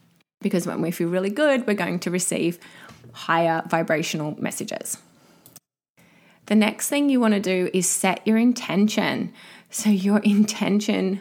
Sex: female